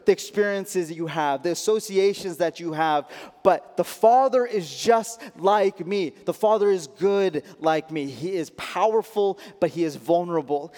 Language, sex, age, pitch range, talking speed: English, male, 20-39, 170-220 Hz, 165 wpm